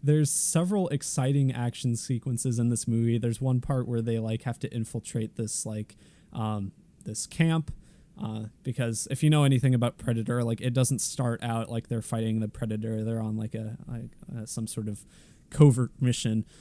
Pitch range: 115-135 Hz